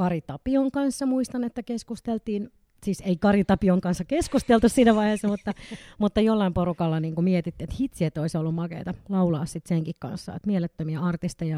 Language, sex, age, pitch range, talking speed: Finnish, female, 30-49, 170-215 Hz, 160 wpm